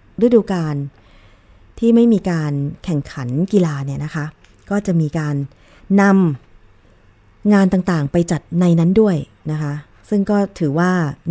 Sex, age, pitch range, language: female, 20-39, 150-185 Hz, Thai